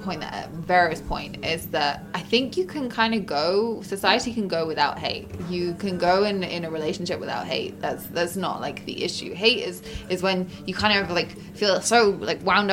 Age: 20-39